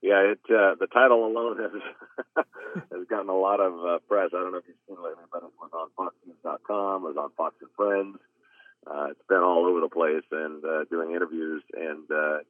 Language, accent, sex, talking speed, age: English, American, male, 225 wpm, 40-59